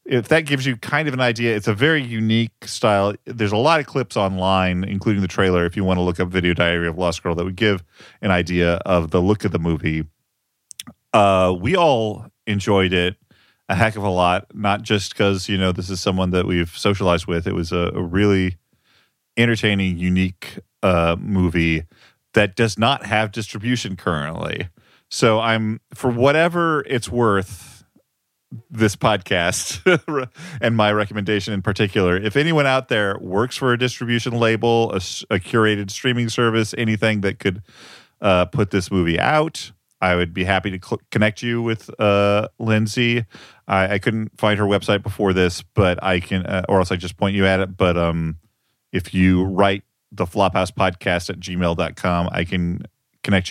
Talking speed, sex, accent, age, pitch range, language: 180 wpm, male, American, 40-59, 90-115 Hz, English